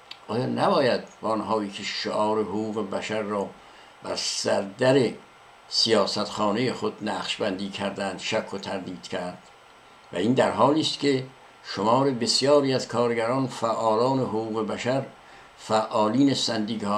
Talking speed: 115 wpm